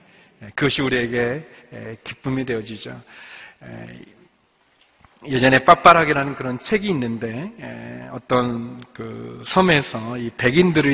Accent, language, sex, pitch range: native, Korean, male, 115-150 Hz